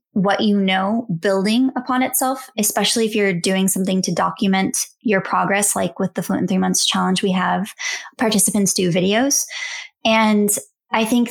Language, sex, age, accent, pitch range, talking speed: English, female, 20-39, American, 195-220 Hz, 165 wpm